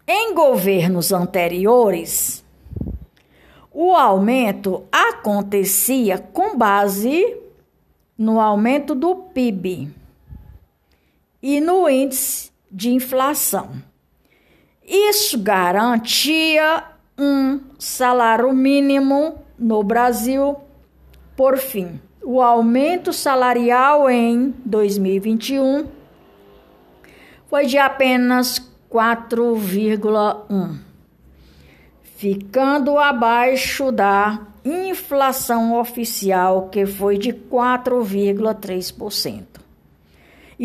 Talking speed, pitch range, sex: 65 wpm, 200-270 Hz, female